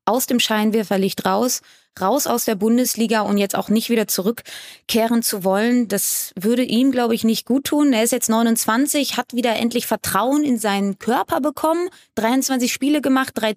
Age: 20-39